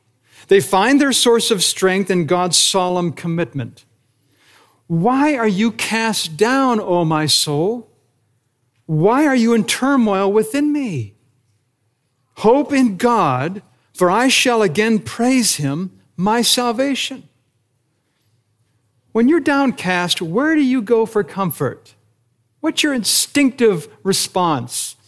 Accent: American